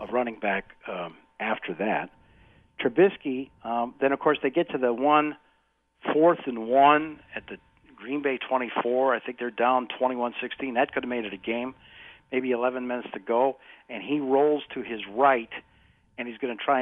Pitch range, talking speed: 115-150 Hz, 190 wpm